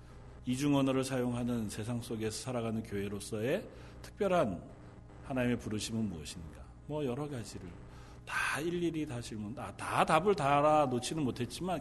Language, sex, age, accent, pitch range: Korean, male, 40-59, native, 105-155 Hz